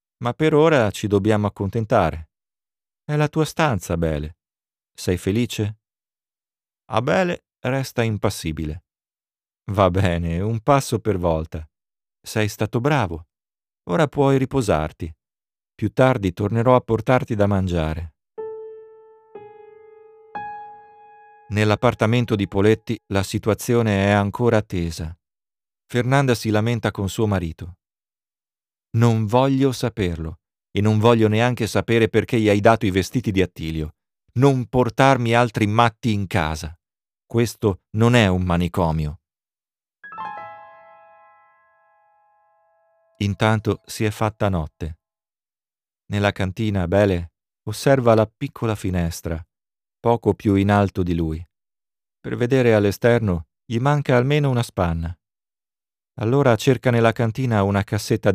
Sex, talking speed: male, 110 wpm